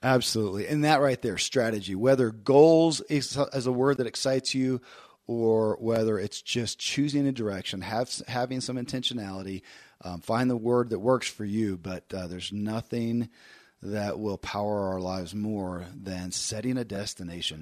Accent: American